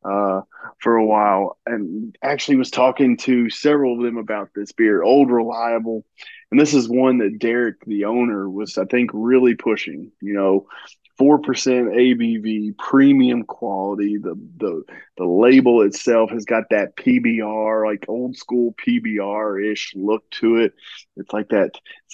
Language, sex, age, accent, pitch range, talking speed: English, male, 20-39, American, 110-125 Hz, 155 wpm